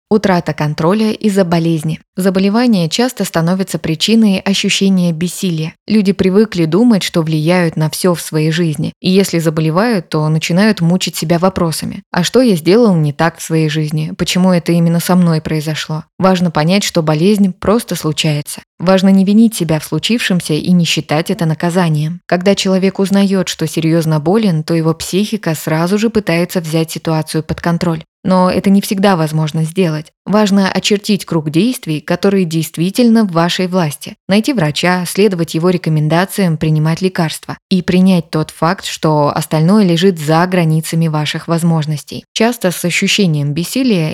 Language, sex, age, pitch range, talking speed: Russian, female, 20-39, 160-195 Hz, 155 wpm